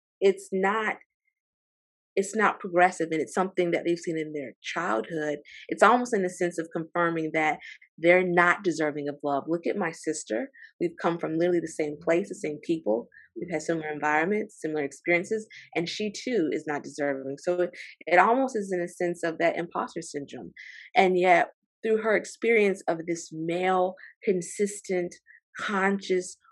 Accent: American